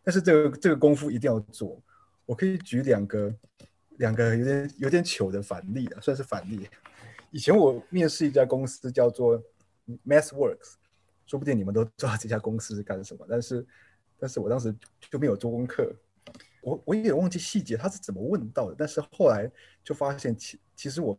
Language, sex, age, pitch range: Chinese, male, 20-39, 110-150 Hz